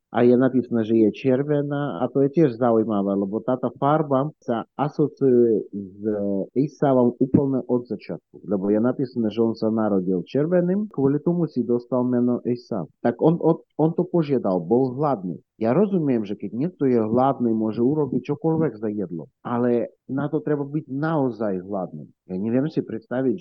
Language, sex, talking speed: Slovak, male, 165 wpm